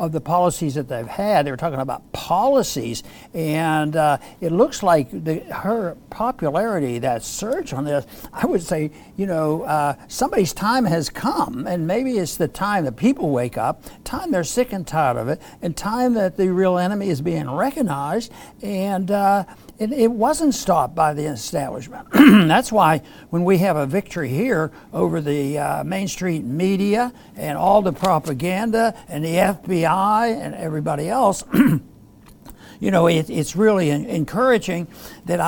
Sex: male